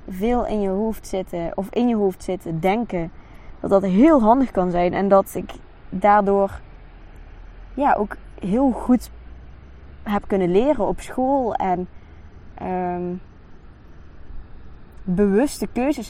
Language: Dutch